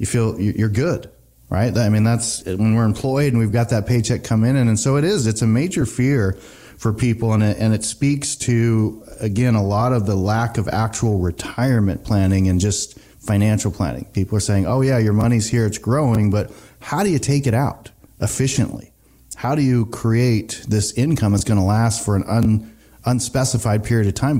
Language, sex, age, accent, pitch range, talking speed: English, male, 30-49, American, 105-125 Hz, 200 wpm